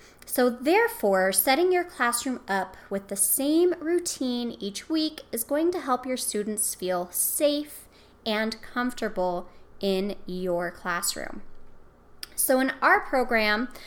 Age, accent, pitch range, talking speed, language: 20-39, American, 200-295 Hz, 125 wpm, English